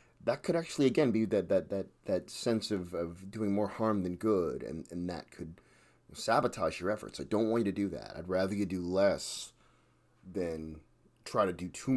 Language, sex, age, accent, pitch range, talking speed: English, male, 30-49, American, 95-115 Hz, 205 wpm